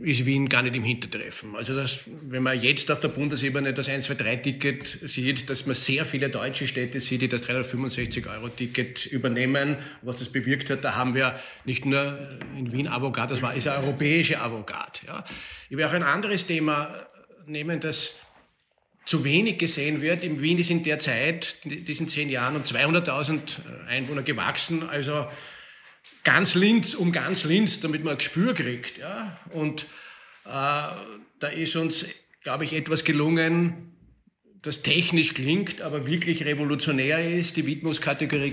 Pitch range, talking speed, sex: 135-165 Hz, 165 wpm, male